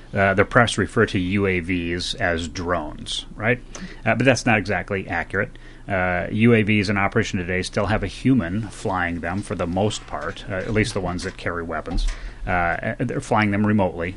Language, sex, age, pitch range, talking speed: English, male, 30-49, 90-120 Hz, 180 wpm